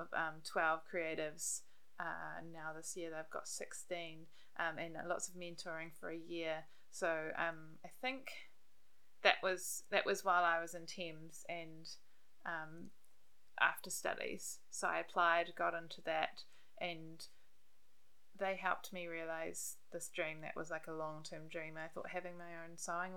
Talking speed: 160 wpm